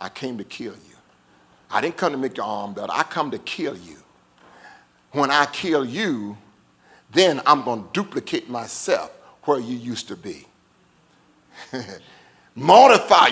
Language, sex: English, male